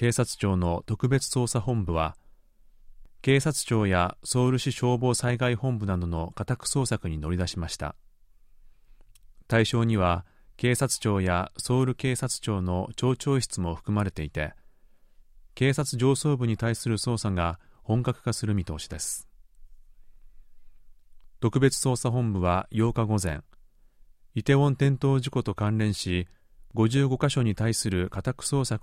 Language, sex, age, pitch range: Japanese, male, 30-49, 90-125 Hz